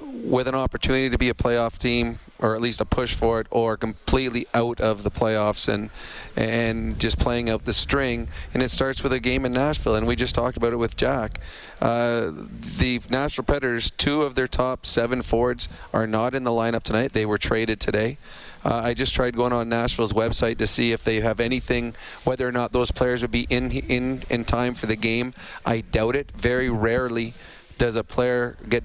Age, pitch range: 30-49, 115-125 Hz